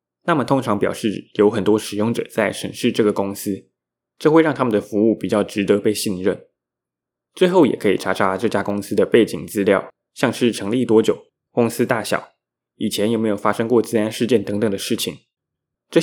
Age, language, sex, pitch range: 20-39, Chinese, male, 95-115 Hz